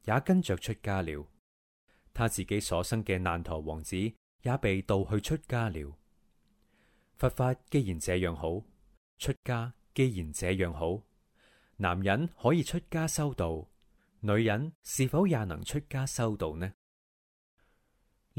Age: 30-49